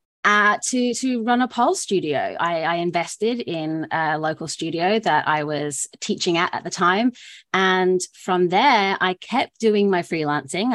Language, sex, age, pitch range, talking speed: English, female, 30-49, 160-205 Hz, 165 wpm